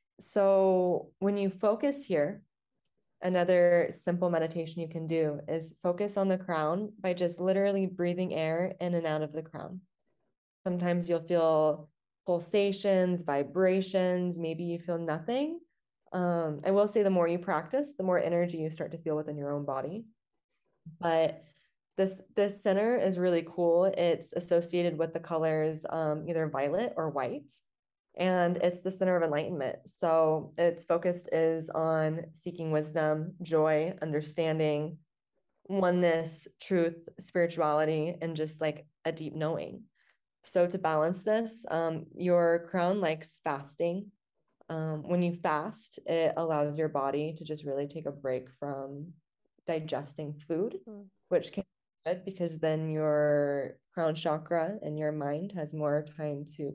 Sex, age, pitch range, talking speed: female, 20-39, 155-180 Hz, 145 wpm